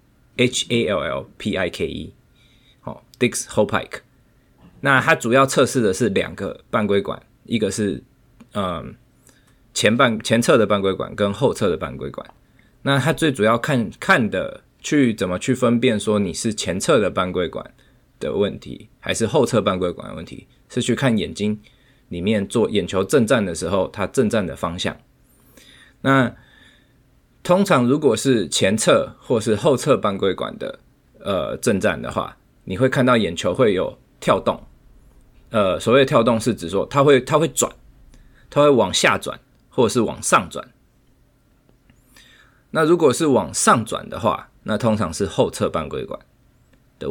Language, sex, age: Chinese, male, 20-39